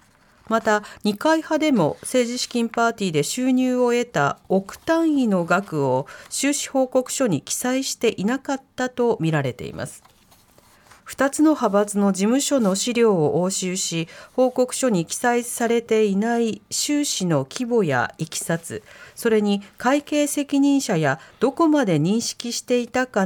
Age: 40-59